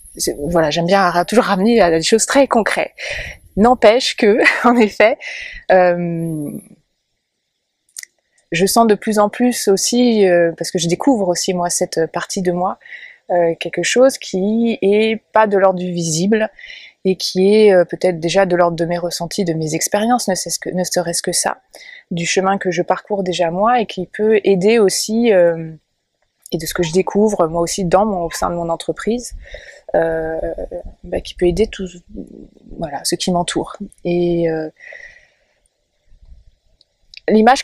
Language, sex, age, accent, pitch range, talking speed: French, female, 20-39, French, 175-215 Hz, 165 wpm